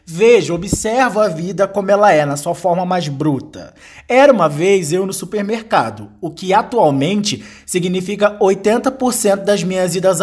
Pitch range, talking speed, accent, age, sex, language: 140-205 Hz, 155 wpm, Brazilian, 20-39, male, Portuguese